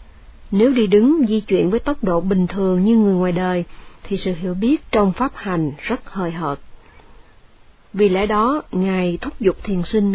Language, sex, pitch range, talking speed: Vietnamese, female, 175-230 Hz, 190 wpm